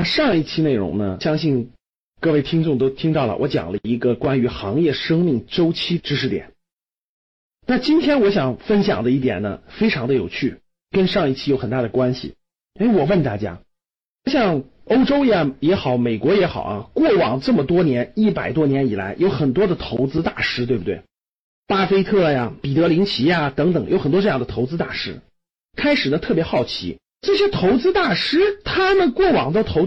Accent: native